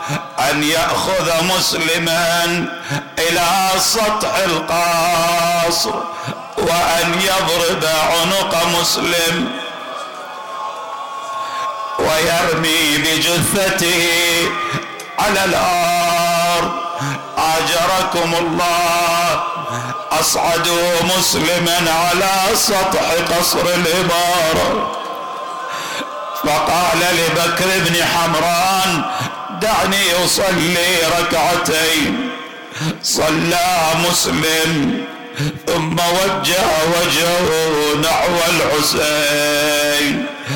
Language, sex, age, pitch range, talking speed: Arabic, male, 50-69, 160-175 Hz, 55 wpm